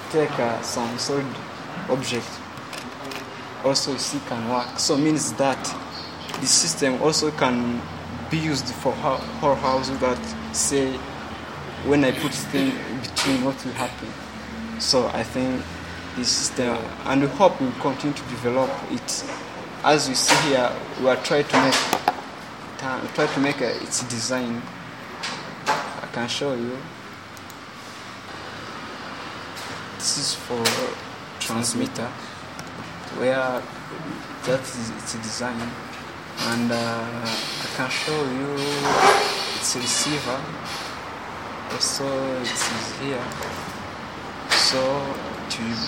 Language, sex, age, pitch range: Japanese, male, 20-39, 120-140 Hz